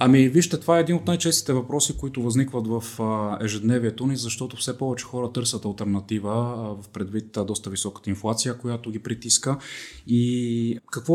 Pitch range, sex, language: 110-135 Hz, male, Bulgarian